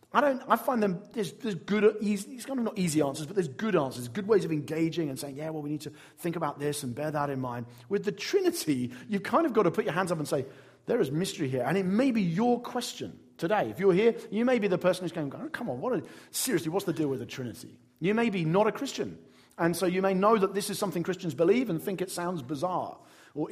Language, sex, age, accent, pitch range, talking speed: English, male, 40-59, British, 145-200 Hz, 275 wpm